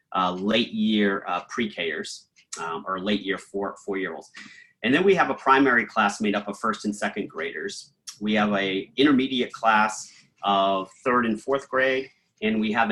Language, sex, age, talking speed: English, male, 30-49, 165 wpm